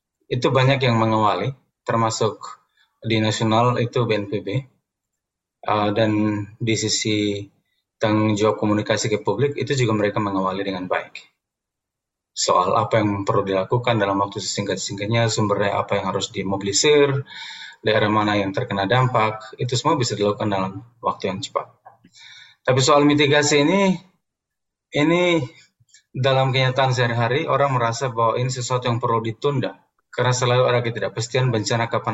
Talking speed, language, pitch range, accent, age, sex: 135 wpm, Indonesian, 110-130 Hz, native, 20-39, male